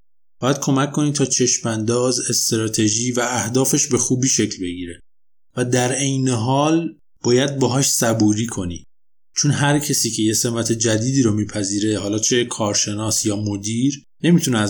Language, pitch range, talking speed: Persian, 110-135 Hz, 145 wpm